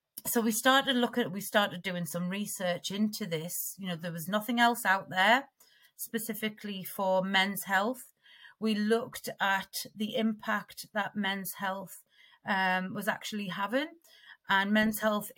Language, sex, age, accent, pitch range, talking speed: English, female, 30-49, British, 195-225 Hz, 150 wpm